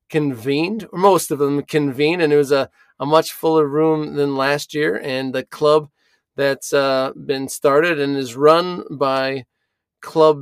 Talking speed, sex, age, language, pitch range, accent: 165 wpm, male, 30-49, English, 135-165 Hz, American